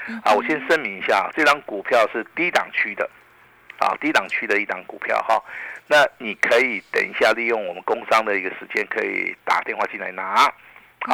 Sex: male